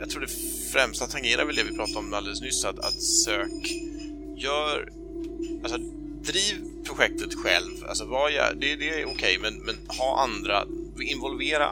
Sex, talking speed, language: male, 160 wpm, Swedish